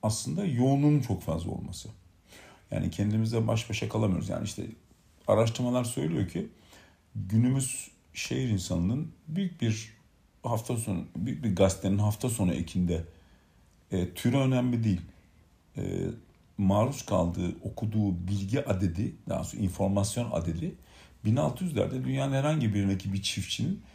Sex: male